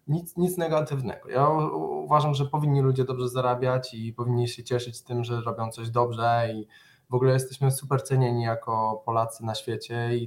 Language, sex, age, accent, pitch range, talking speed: Polish, male, 20-39, native, 125-150 Hz, 180 wpm